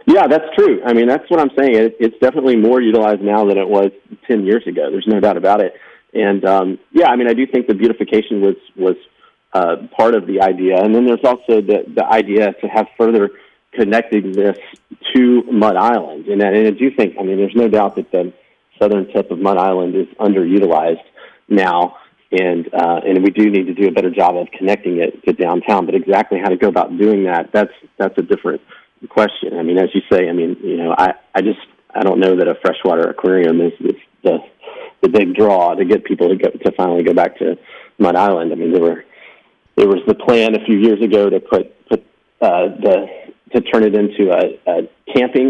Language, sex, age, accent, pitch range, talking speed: English, male, 40-59, American, 100-130 Hz, 220 wpm